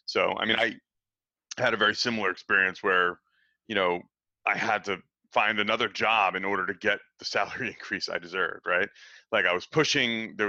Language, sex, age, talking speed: English, male, 30-49, 190 wpm